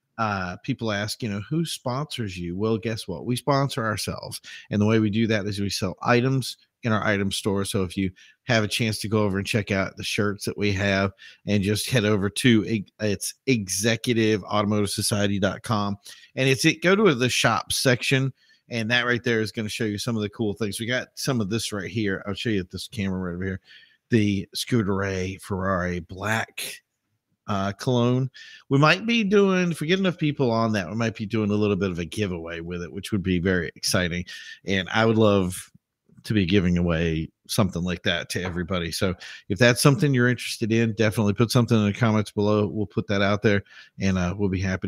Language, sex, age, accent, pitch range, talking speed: English, male, 40-59, American, 100-120 Hz, 215 wpm